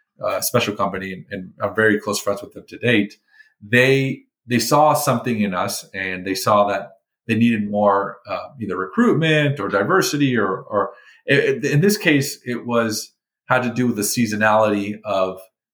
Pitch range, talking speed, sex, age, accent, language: 100-125 Hz, 180 wpm, male, 40-59, American, English